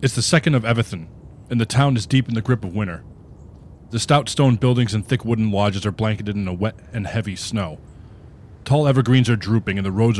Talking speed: 225 wpm